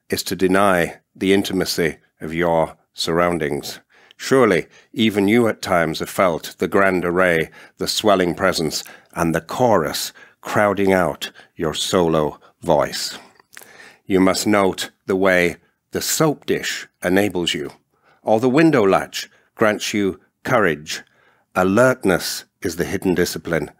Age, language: 50-69, Dutch